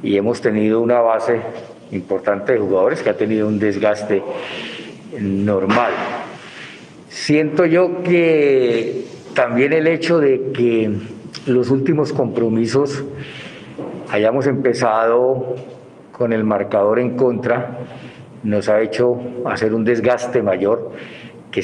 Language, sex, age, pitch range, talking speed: Spanish, male, 50-69, 105-140 Hz, 110 wpm